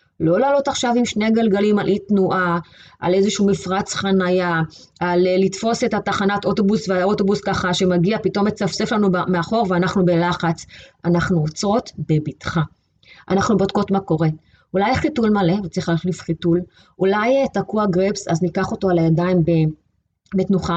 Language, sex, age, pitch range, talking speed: Hebrew, female, 20-39, 165-205 Hz, 140 wpm